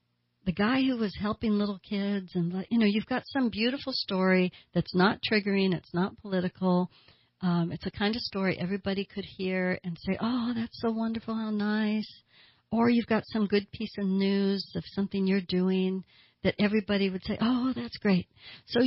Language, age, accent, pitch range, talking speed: English, 60-79, American, 175-215 Hz, 185 wpm